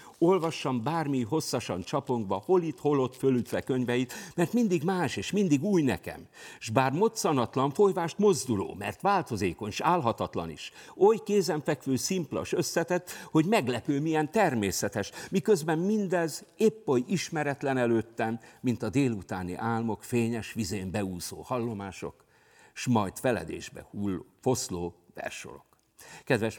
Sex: male